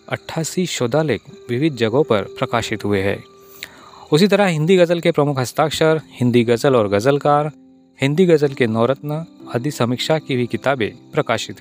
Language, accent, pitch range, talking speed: Hindi, native, 115-150 Hz, 150 wpm